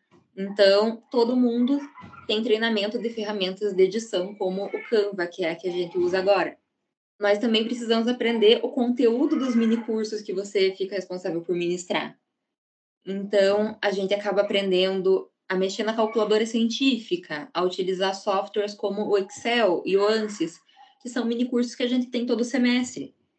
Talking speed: 160 wpm